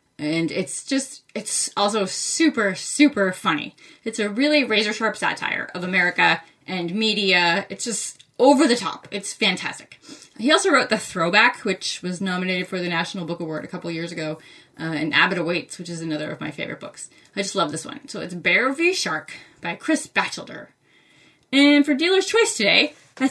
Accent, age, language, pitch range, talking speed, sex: American, 20-39, English, 175-230 Hz, 185 wpm, female